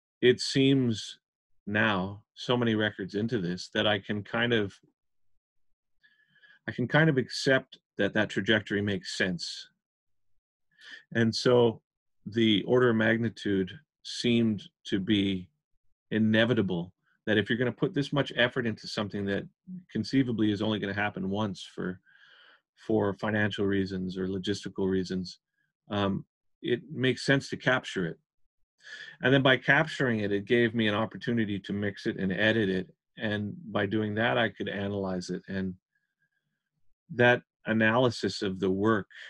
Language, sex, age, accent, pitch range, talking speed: English, male, 30-49, American, 100-120 Hz, 145 wpm